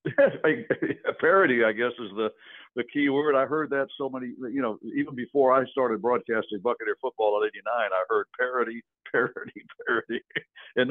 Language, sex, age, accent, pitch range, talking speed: English, male, 60-79, American, 115-155 Hz, 170 wpm